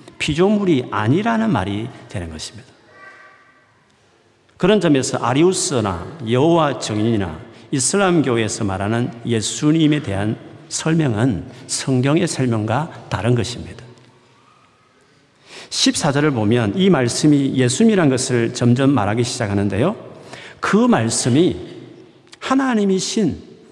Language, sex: Korean, male